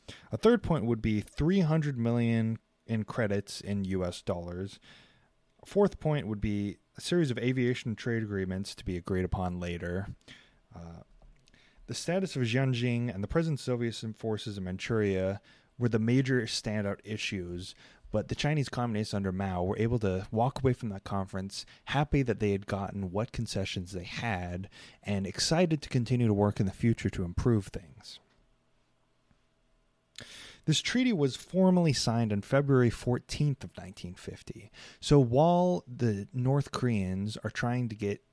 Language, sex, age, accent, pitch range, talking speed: English, male, 30-49, American, 95-130 Hz, 155 wpm